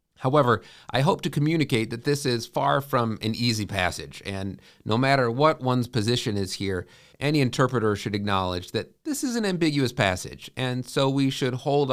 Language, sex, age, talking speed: English, male, 40-59, 180 wpm